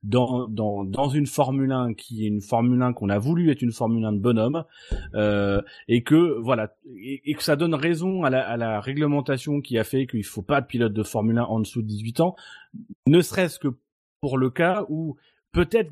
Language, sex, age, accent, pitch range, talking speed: French, male, 30-49, French, 120-155 Hz, 220 wpm